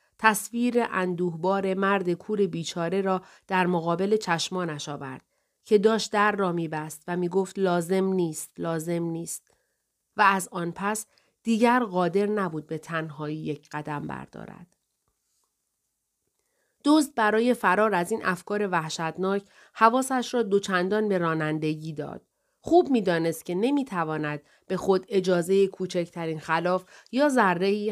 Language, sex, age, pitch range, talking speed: Persian, female, 30-49, 165-220 Hz, 120 wpm